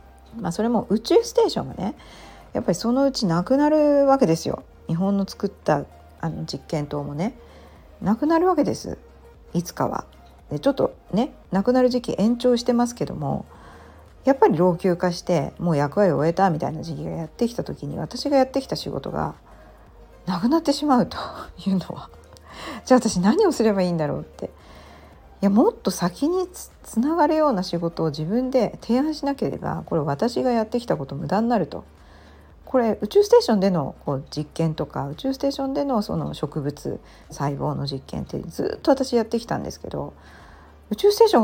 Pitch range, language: 155-260 Hz, Japanese